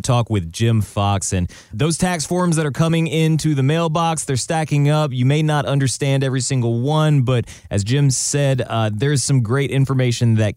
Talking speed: 195 wpm